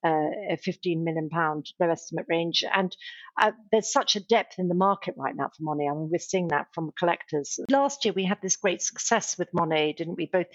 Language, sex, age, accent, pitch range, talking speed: English, female, 50-69, British, 165-195 Hz, 220 wpm